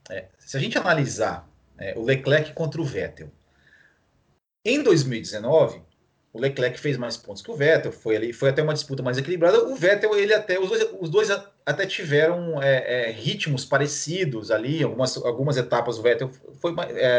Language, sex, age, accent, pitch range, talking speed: Portuguese, male, 30-49, Brazilian, 125-200 Hz, 175 wpm